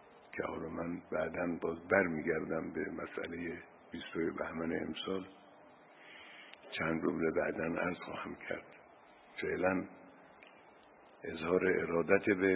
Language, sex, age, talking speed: Persian, male, 60-79, 100 wpm